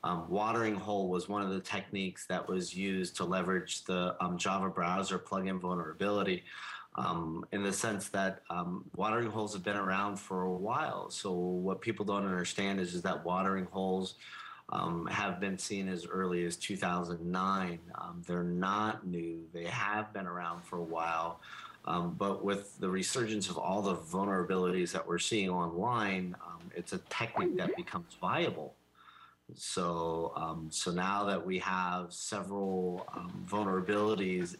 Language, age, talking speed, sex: English, 30-49, 160 wpm, male